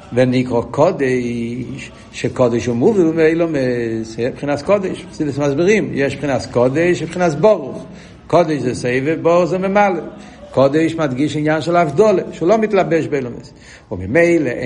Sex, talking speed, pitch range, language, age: male, 125 wpm, 130-180 Hz, Hebrew, 70-89